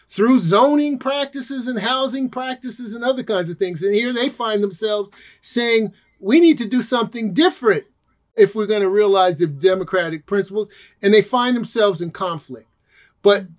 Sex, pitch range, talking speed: male, 190-225 Hz, 170 wpm